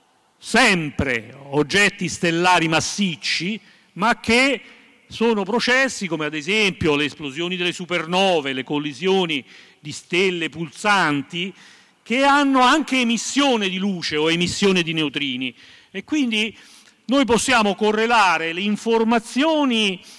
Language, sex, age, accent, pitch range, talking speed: Italian, male, 40-59, native, 170-225 Hz, 110 wpm